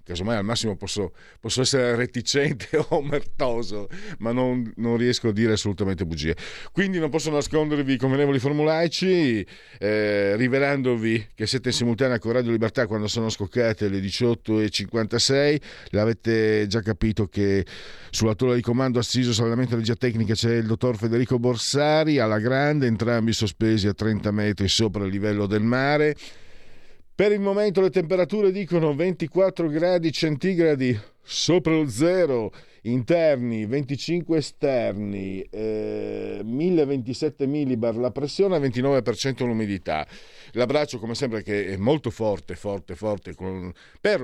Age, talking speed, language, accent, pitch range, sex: 50-69, 135 wpm, Italian, native, 105-140 Hz, male